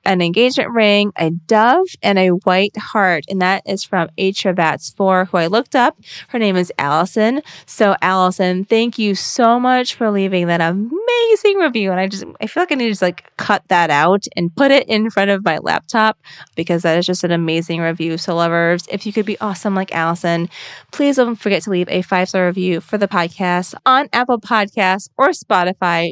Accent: American